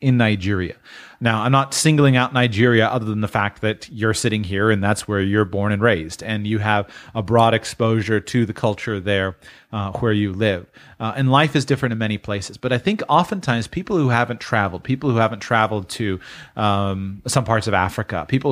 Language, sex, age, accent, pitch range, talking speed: English, male, 30-49, American, 105-125 Hz, 205 wpm